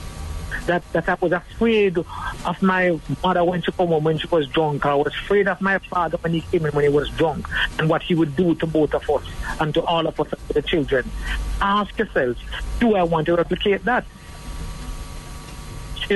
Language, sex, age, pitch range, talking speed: English, male, 60-79, 160-200 Hz, 205 wpm